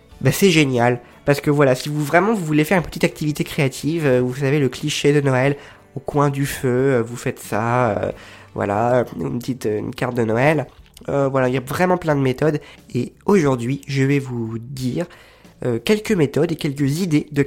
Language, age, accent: French, 20-39, French